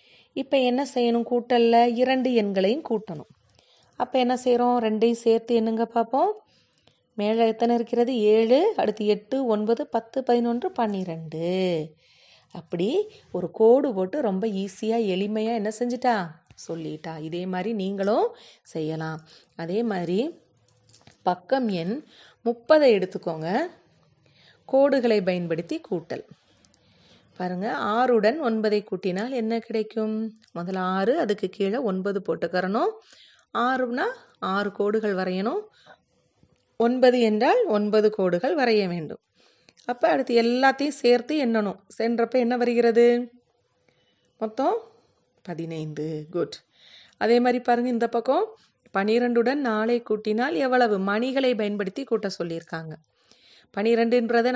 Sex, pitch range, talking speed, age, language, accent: female, 185-245 Hz, 105 wpm, 30-49, Tamil, native